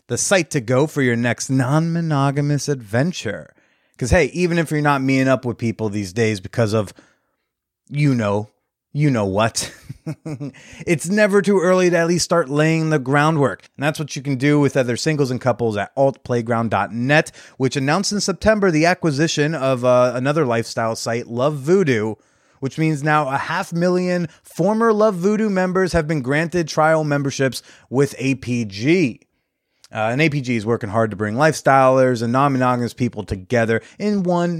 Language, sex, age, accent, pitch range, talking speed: English, male, 30-49, American, 120-155 Hz, 170 wpm